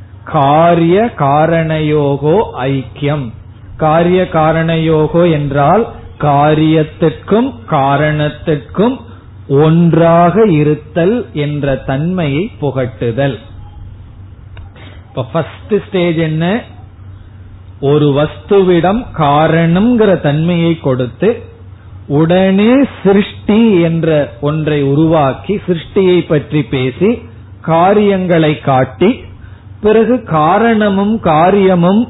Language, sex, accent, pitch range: Tamil, male, native, 135-190 Hz